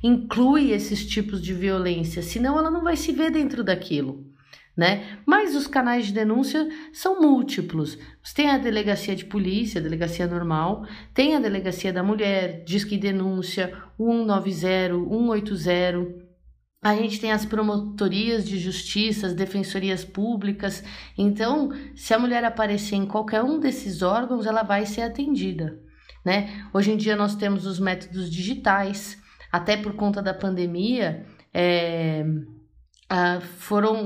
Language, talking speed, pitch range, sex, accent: Portuguese, 140 wpm, 180-220 Hz, female, Brazilian